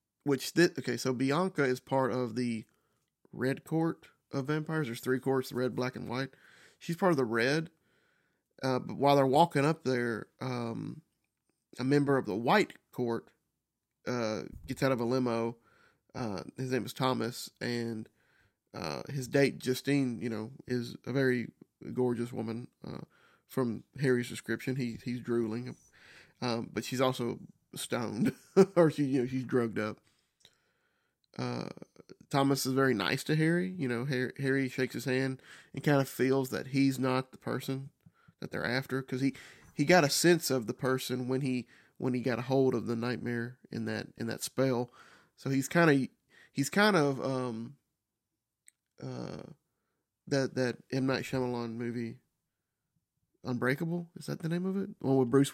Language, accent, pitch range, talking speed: English, American, 120-140 Hz, 170 wpm